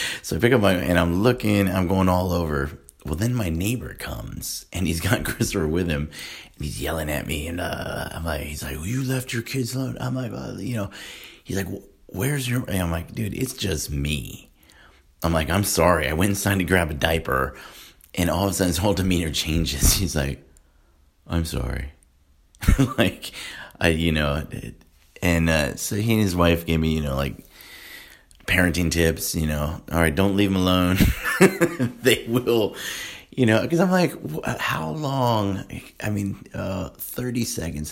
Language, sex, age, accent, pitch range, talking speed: English, male, 30-49, American, 75-100 Hz, 195 wpm